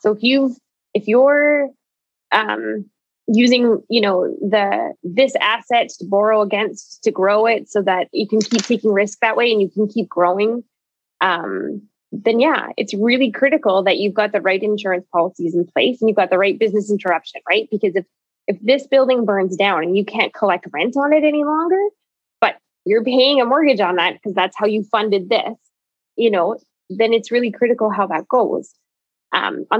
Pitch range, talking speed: 195-240 Hz, 190 wpm